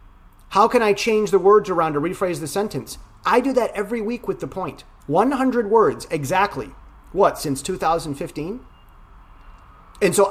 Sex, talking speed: male, 155 wpm